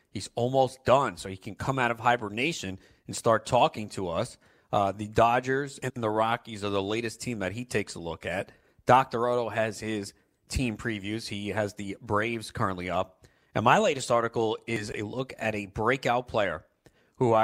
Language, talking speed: English, 190 wpm